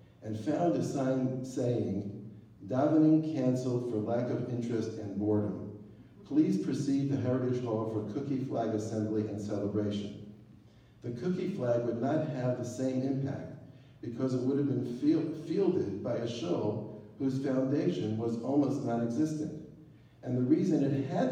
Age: 60-79